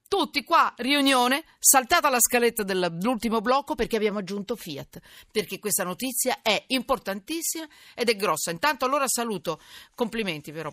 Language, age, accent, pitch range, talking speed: Italian, 50-69, native, 170-240 Hz, 140 wpm